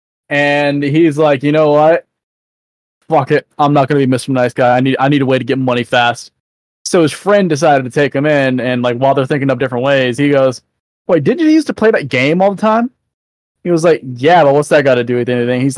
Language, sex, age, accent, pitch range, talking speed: English, male, 20-39, American, 135-195 Hz, 250 wpm